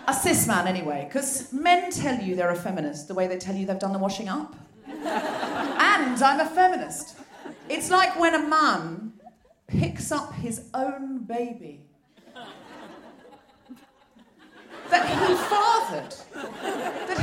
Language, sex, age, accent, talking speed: English, female, 40-59, British, 135 wpm